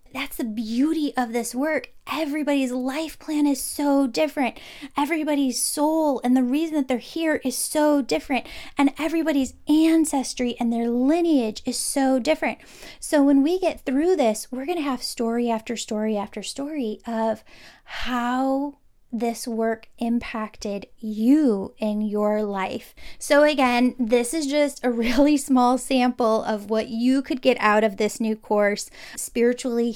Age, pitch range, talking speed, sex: 10-29, 220-275 Hz, 150 wpm, female